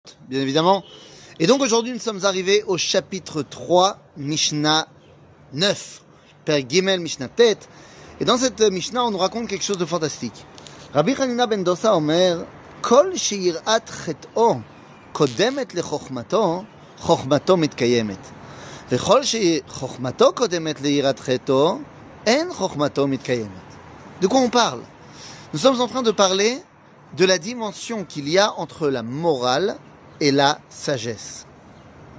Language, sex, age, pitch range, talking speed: French, male, 30-49, 140-200 Hz, 90 wpm